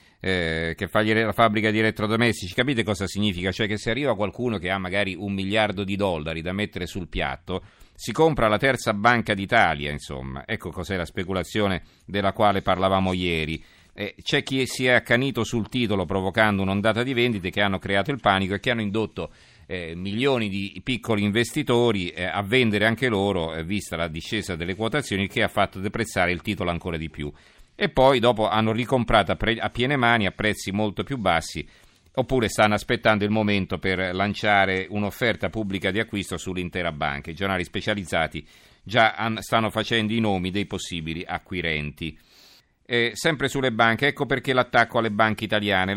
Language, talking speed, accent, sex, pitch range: Italian, 170 wpm, native, male, 90-115 Hz